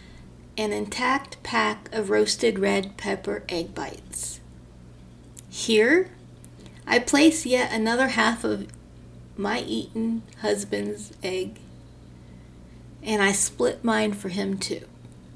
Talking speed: 105 wpm